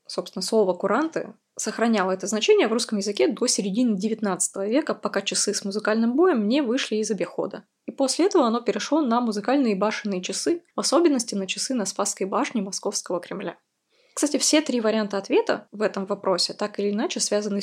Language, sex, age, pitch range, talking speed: Russian, female, 20-39, 190-245 Hz, 175 wpm